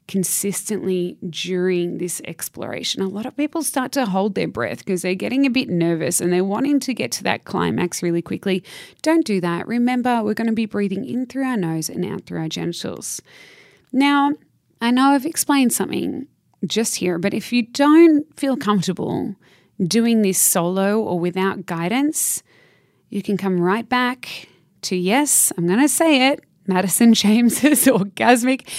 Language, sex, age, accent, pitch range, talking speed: English, female, 20-39, Australian, 180-240 Hz, 170 wpm